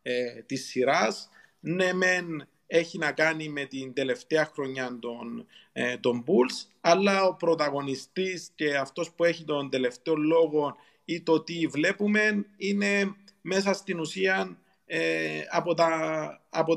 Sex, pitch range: male, 135-170 Hz